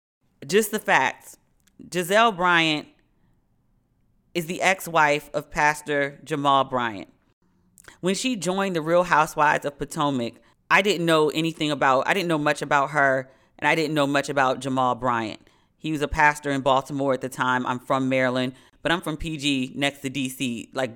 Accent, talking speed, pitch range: American, 170 wpm, 130-155 Hz